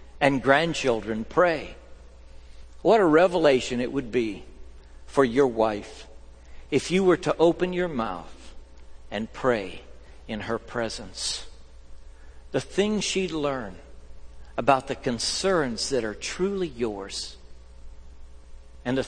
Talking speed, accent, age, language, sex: 115 wpm, American, 60-79, English, male